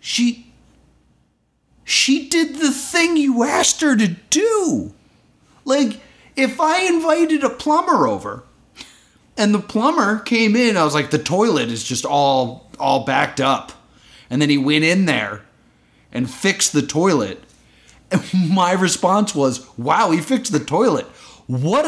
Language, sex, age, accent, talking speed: English, male, 30-49, American, 145 wpm